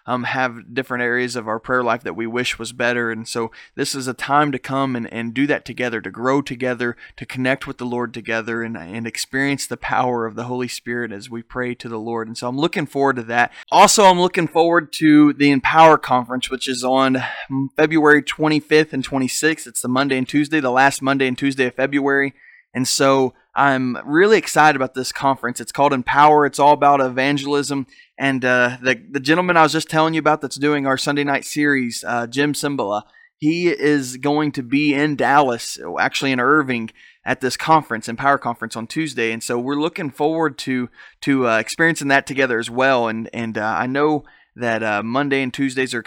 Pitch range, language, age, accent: 120-140 Hz, English, 20-39, American